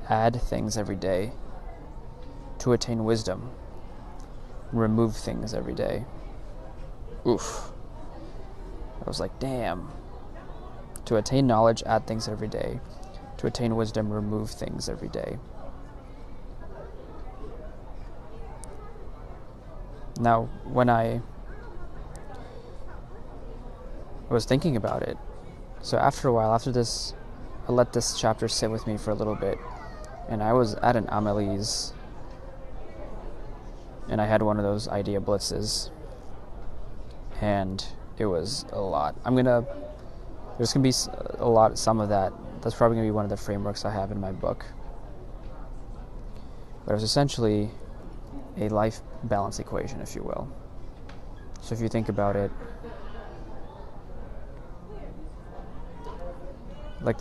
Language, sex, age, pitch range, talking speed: English, male, 20-39, 105-115 Hz, 125 wpm